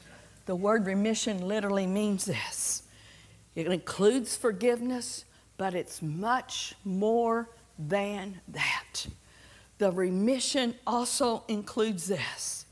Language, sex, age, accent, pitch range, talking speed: English, female, 50-69, American, 195-280 Hz, 95 wpm